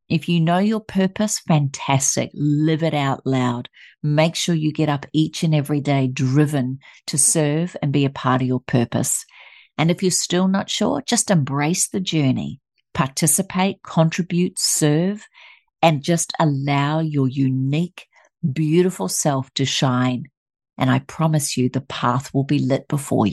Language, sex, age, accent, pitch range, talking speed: English, female, 50-69, Australian, 135-170 Hz, 155 wpm